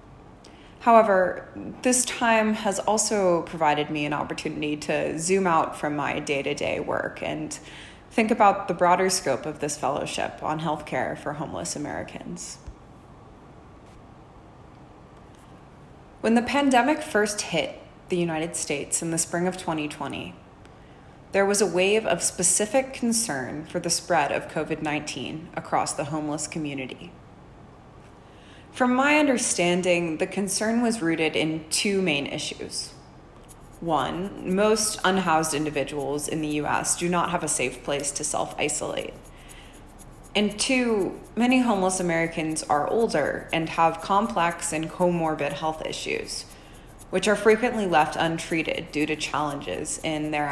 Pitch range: 155-210 Hz